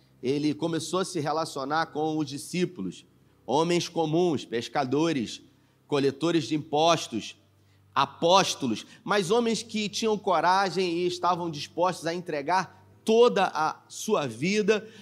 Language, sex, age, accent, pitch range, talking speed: Portuguese, male, 30-49, Brazilian, 145-180 Hz, 115 wpm